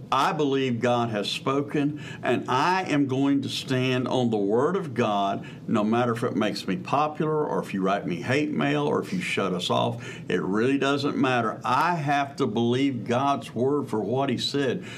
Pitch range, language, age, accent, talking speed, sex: 120-155 Hz, English, 60-79, American, 200 wpm, male